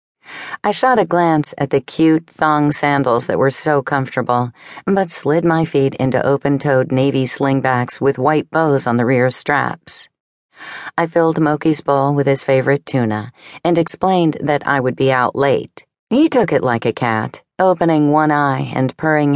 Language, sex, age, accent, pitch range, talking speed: English, female, 40-59, American, 130-160 Hz, 170 wpm